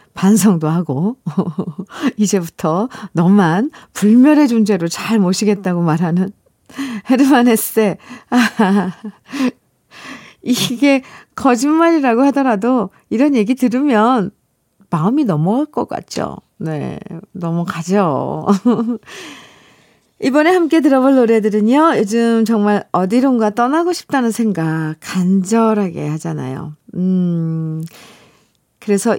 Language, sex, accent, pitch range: Korean, female, native, 185-255 Hz